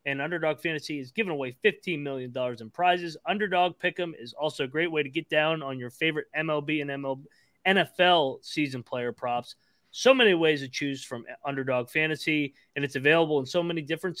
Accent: American